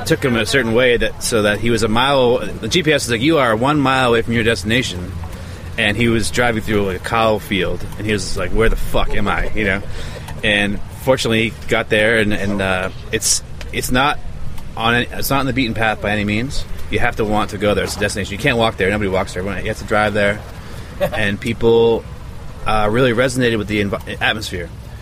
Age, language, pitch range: 30-49, English, 100-115 Hz